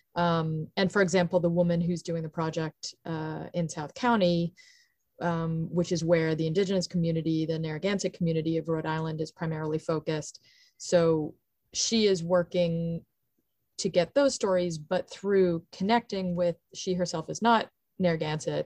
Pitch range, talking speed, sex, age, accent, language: 160-185 Hz, 150 wpm, female, 30-49, American, English